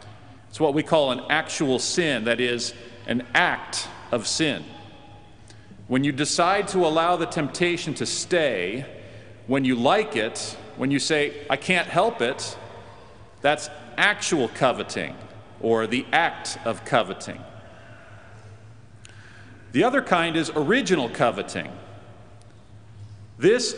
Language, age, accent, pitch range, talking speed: English, 40-59, American, 115-175 Hz, 120 wpm